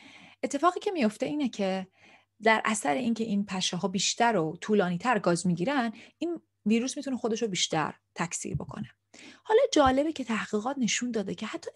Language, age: Persian, 30-49